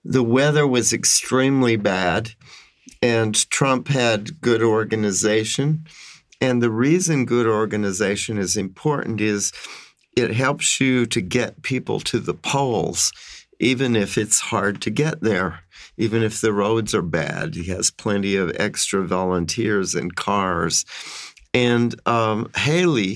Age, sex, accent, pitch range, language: 50-69, male, American, 100-125 Hz, Japanese